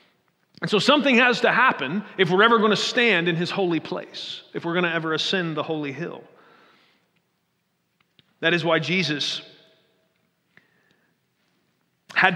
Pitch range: 160-205 Hz